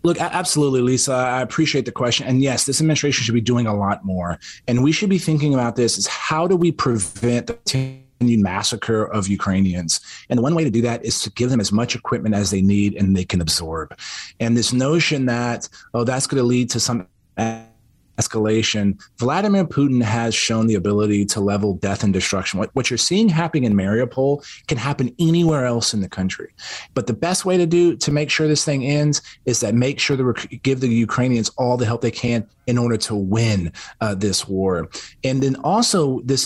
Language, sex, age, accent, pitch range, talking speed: English, male, 30-49, American, 110-150 Hz, 210 wpm